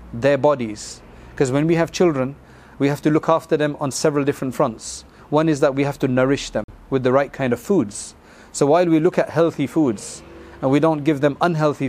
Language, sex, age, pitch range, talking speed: English, male, 40-59, 130-155 Hz, 220 wpm